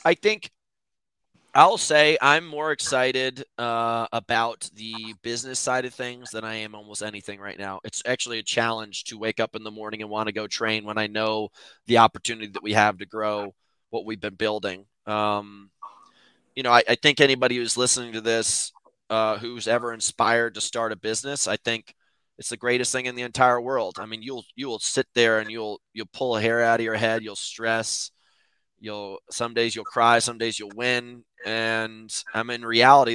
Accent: American